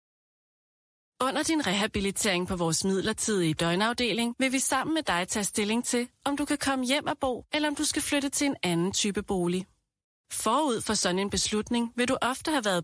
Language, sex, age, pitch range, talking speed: Danish, female, 30-49, 190-265 Hz, 195 wpm